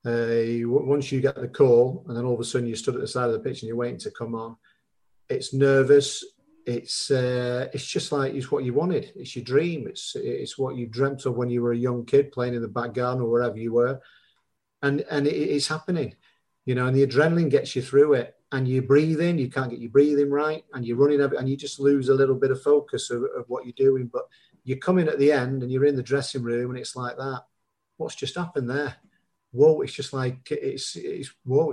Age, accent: 40-59, British